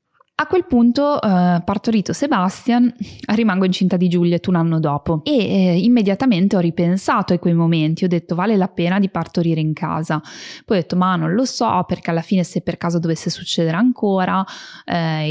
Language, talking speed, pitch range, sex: Italian, 185 wpm, 165-205 Hz, female